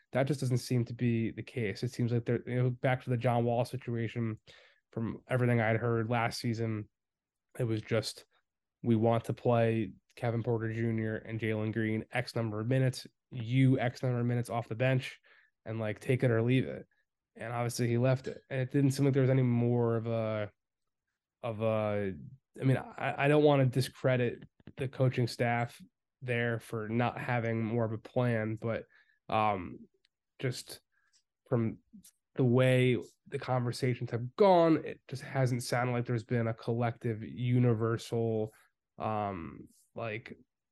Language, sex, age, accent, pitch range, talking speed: English, male, 20-39, American, 115-130 Hz, 170 wpm